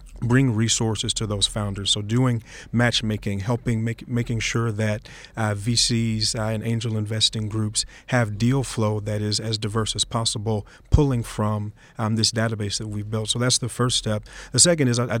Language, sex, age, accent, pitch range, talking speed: English, male, 40-59, American, 110-125 Hz, 180 wpm